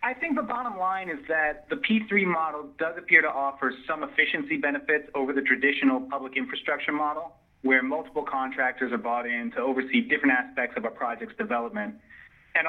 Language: English